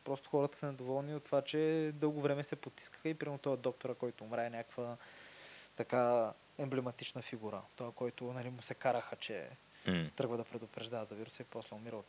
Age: 20-39